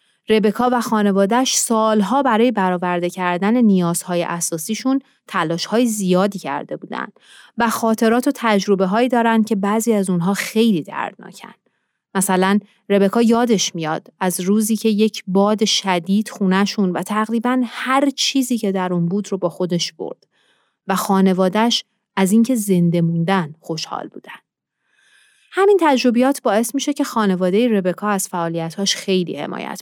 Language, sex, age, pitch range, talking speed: Persian, female, 30-49, 190-245 Hz, 135 wpm